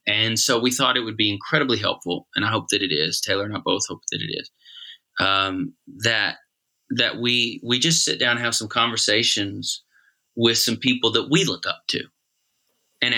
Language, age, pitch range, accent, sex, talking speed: English, 30-49, 105-130 Hz, American, male, 200 wpm